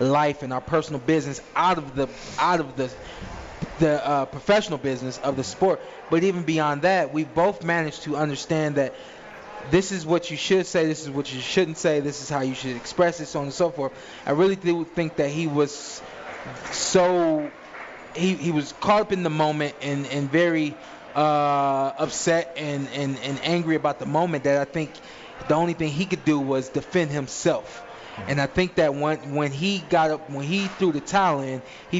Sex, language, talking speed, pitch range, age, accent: male, English, 205 wpm, 140-170 Hz, 20-39, American